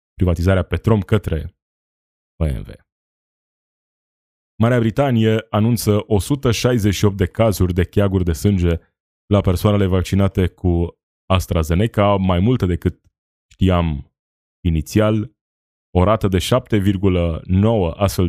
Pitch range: 85-105 Hz